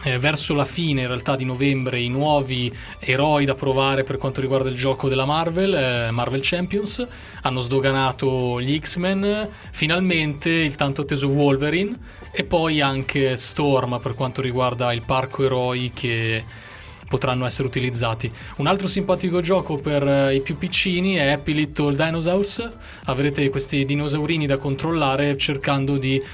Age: 20-39